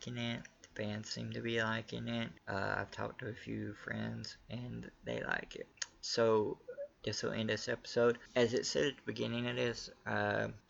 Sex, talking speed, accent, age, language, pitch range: male, 190 wpm, American, 20-39, English, 105-115 Hz